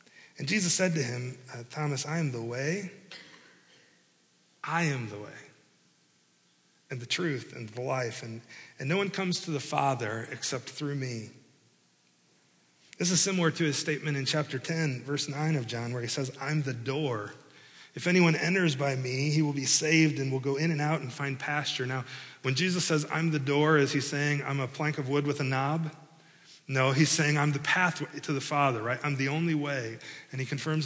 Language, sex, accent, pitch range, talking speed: English, male, American, 130-160 Hz, 200 wpm